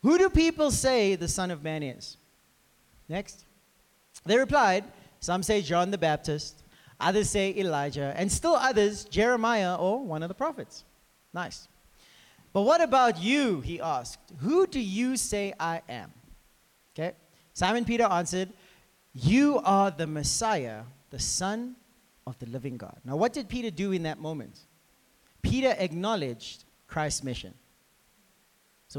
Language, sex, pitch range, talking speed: English, male, 150-230 Hz, 145 wpm